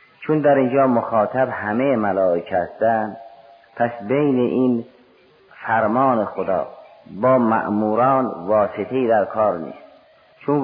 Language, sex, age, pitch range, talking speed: Persian, male, 40-59, 100-125 Hz, 105 wpm